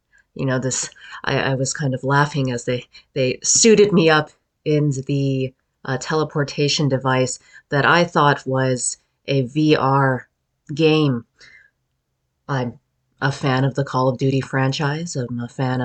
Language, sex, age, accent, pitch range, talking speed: English, female, 30-49, American, 130-155 Hz, 150 wpm